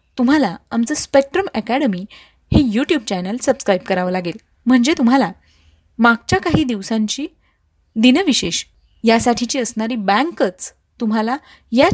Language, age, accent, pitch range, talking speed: Marathi, 20-39, native, 215-275 Hz, 105 wpm